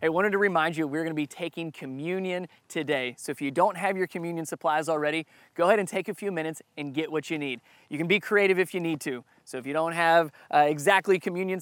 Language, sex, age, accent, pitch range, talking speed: English, male, 20-39, American, 150-185 Hz, 255 wpm